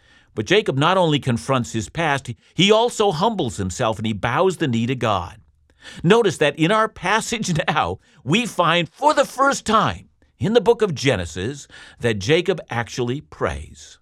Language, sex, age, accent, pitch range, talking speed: English, male, 50-69, American, 105-165 Hz, 165 wpm